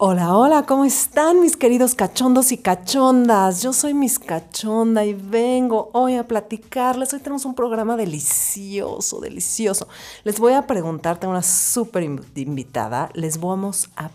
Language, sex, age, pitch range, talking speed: Spanish, female, 50-69, 155-230 Hz, 150 wpm